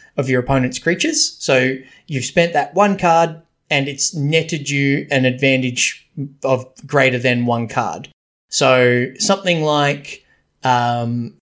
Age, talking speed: 20-39, 130 wpm